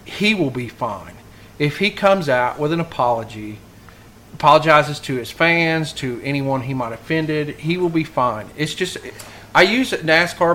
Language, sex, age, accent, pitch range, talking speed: English, male, 30-49, American, 120-165 Hz, 170 wpm